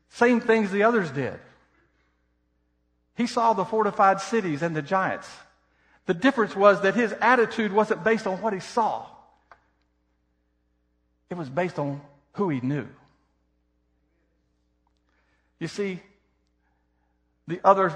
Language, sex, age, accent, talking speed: English, male, 50-69, American, 120 wpm